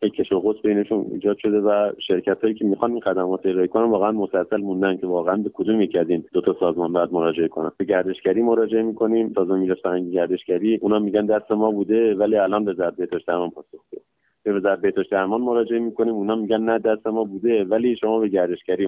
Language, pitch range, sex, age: Persian, 100-115 Hz, male, 30-49